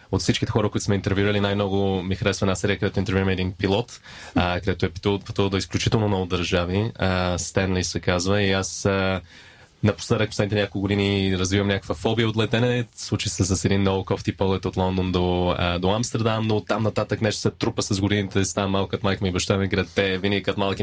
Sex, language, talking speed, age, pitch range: male, Bulgarian, 205 wpm, 20-39, 95-105 Hz